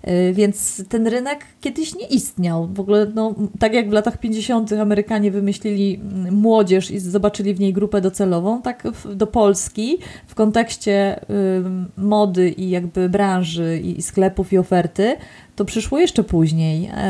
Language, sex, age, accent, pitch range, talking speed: Polish, female, 30-49, native, 180-215 Hz, 140 wpm